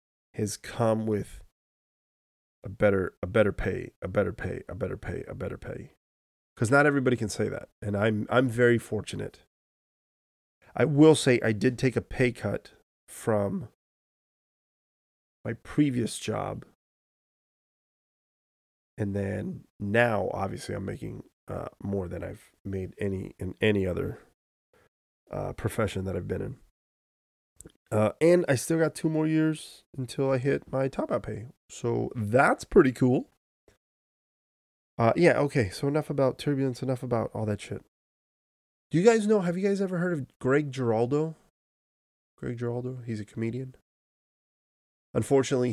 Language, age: English, 30-49